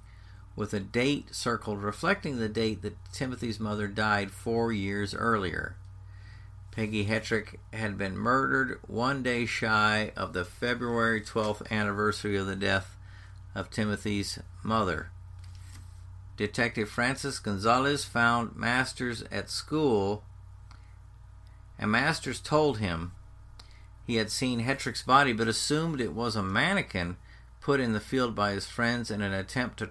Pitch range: 95-120 Hz